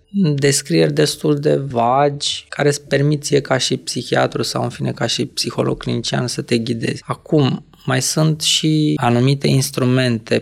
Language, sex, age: Romanian, male, 20-39